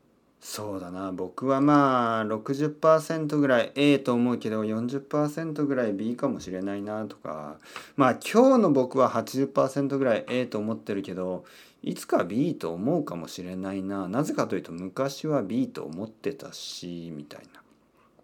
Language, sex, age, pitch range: Japanese, male, 40-59, 110-165 Hz